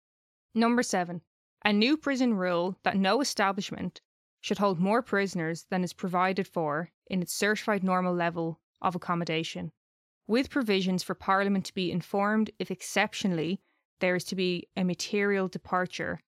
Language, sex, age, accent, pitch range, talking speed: English, female, 20-39, Irish, 180-210 Hz, 145 wpm